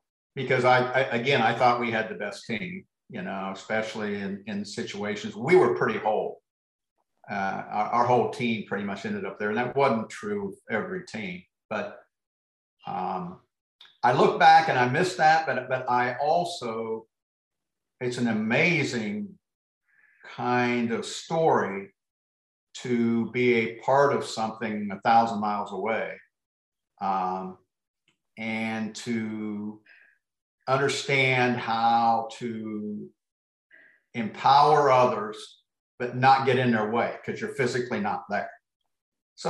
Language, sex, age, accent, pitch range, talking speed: English, male, 50-69, American, 105-145 Hz, 130 wpm